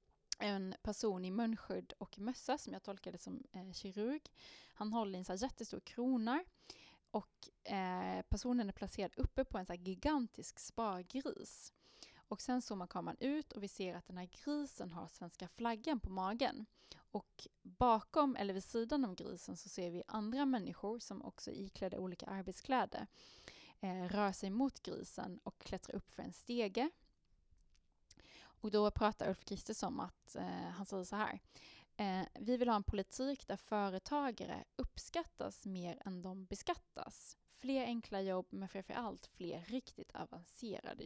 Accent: native